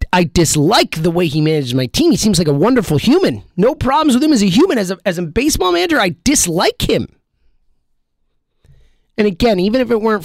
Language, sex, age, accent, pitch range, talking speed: English, male, 30-49, American, 160-270 Hz, 210 wpm